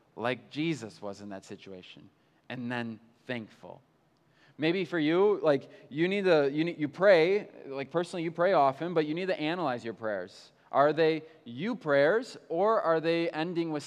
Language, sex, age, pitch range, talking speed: English, male, 20-39, 125-185 Hz, 175 wpm